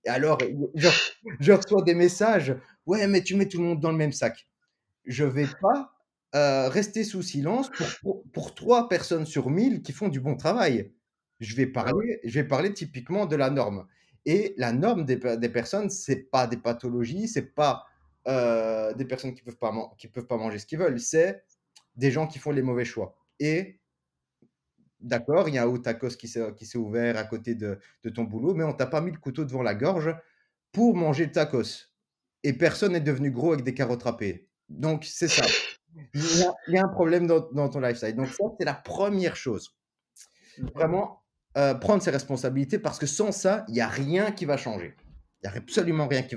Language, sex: French, male